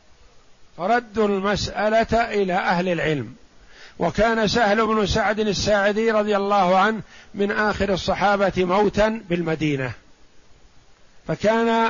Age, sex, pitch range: 50-69, male, 180-210 Hz